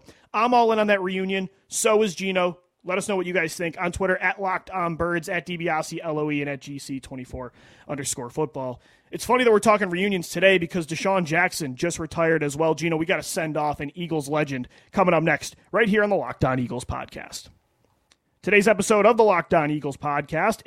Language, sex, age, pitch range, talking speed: English, male, 30-49, 150-195 Hz, 205 wpm